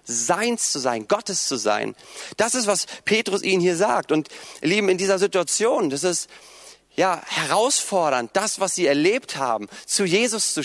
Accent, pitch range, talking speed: German, 160-215 Hz, 175 wpm